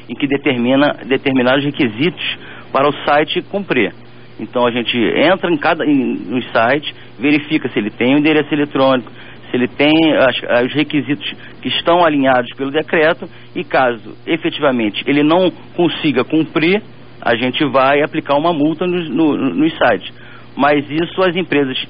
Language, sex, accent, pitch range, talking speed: English, male, Brazilian, 120-155 Hz, 140 wpm